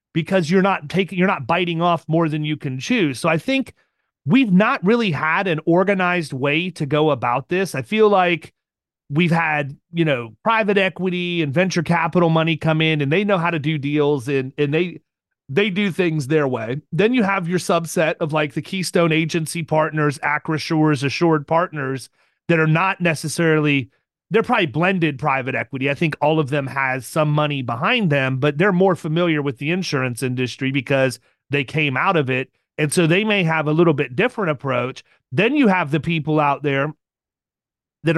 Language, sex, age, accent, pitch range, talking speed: English, male, 30-49, American, 145-180 Hz, 190 wpm